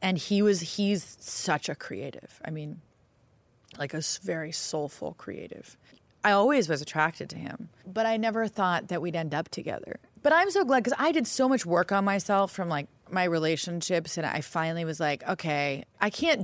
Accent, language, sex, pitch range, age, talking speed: American, English, female, 155-205 Hz, 30-49, 195 wpm